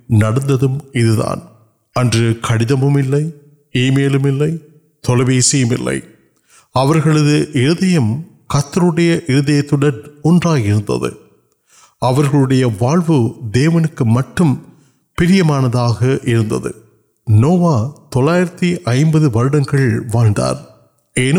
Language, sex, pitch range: Urdu, male, 115-155 Hz